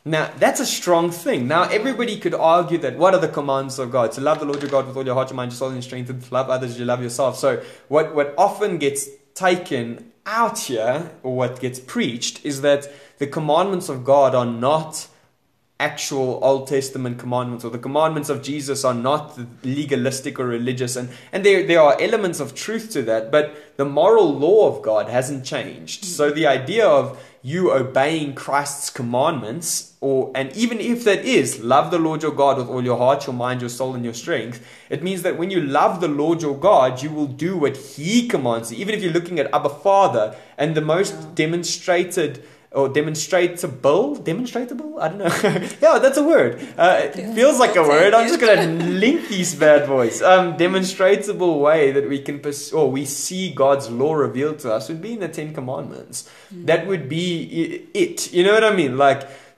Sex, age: male, 20-39